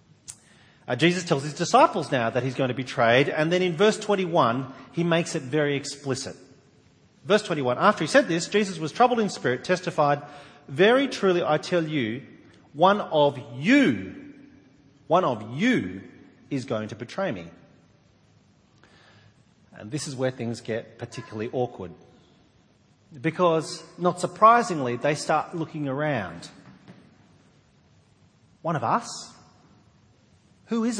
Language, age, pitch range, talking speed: English, 40-59, 130-185 Hz, 135 wpm